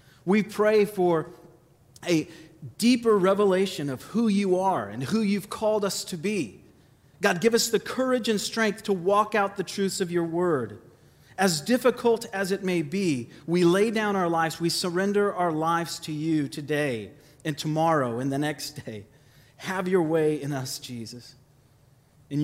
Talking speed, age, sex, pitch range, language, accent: 170 wpm, 40-59, male, 145-205 Hz, English, American